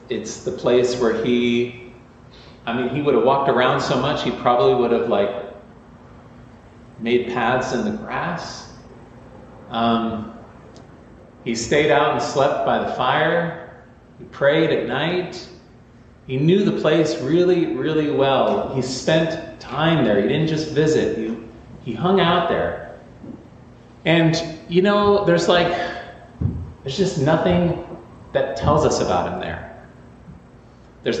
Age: 40-59